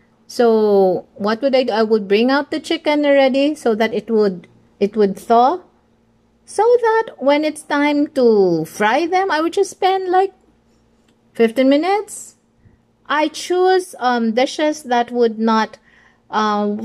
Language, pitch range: English, 205-285 Hz